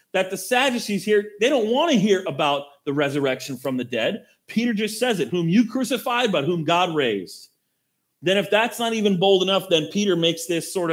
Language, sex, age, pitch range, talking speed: English, male, 30-49, 145-195 Hz, 210 wpm